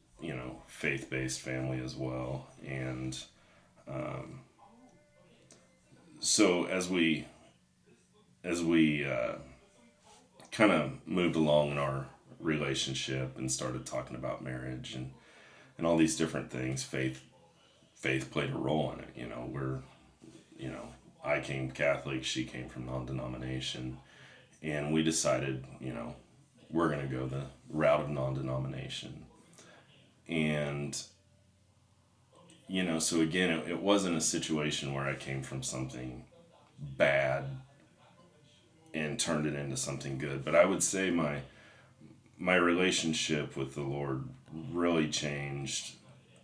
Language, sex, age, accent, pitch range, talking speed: English, male, 30-49, American, 65-80 Hz, 125 wpm